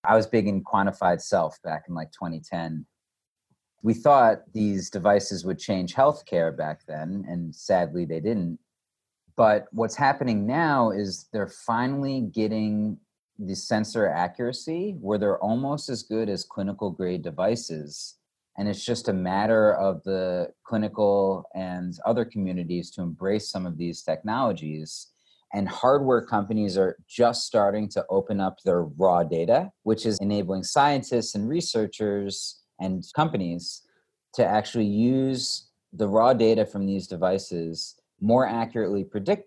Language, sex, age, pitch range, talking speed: English, male, 30-49, 95-115 Hz, 140 wpm